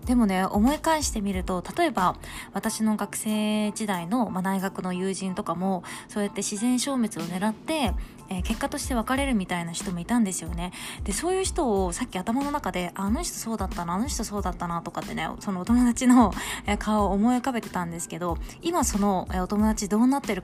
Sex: female